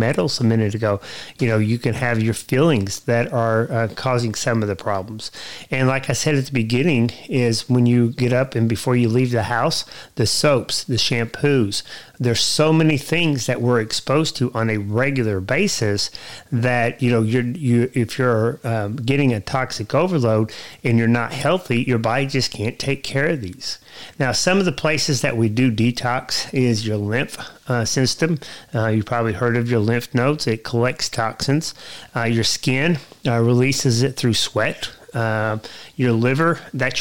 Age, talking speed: 40-59, 185 wpm